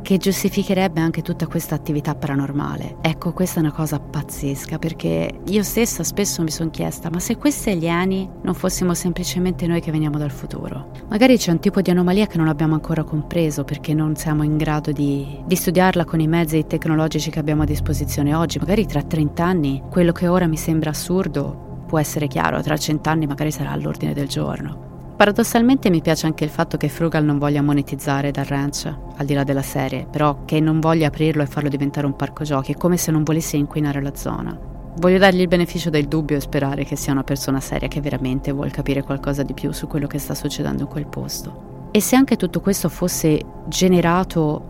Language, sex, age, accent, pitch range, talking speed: Italian, female, 30-49, native, 145-175 Hz, 210 wpm